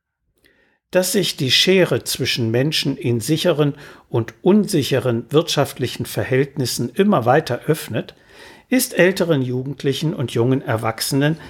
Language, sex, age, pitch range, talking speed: German, male, 60-79, 120-170 Hz, 110 wpm